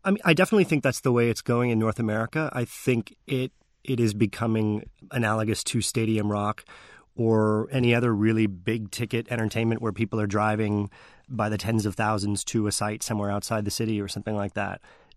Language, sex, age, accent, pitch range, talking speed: English, male, 30-49, American, 105-125 Hz, 200 wpm